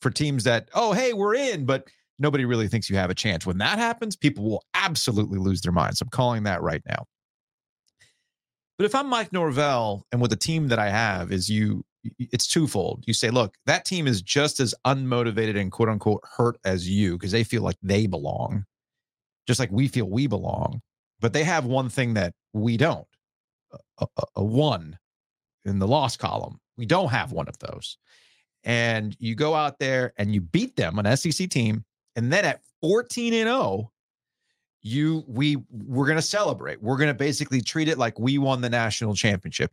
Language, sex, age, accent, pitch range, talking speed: English, male, 30-49, American, 105-145 Hz, 195 wpm